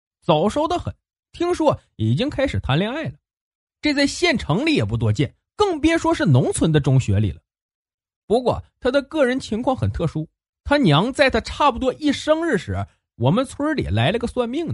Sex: male